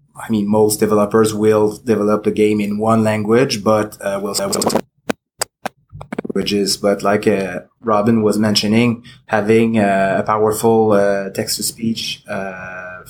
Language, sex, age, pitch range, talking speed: English, male, 20-39, 105-115 Hz, 135 wpm